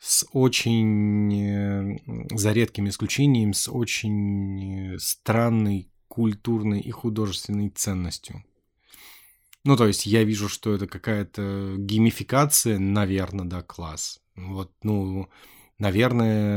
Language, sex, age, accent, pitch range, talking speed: Russian, male, 20-39, native, 95-110 Hz, 100 wpm